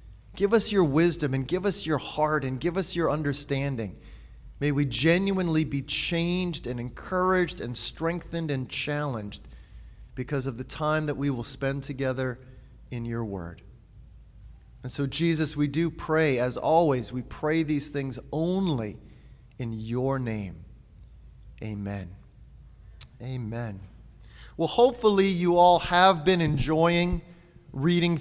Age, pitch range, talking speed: 30-49, 135-165 Hz, 135 wpm